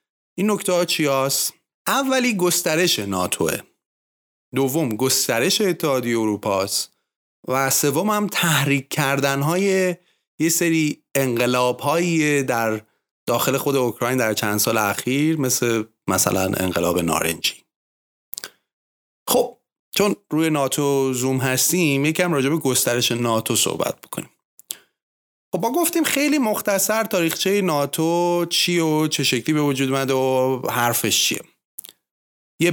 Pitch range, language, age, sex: 120-165 Hz, Persian, 30-49, male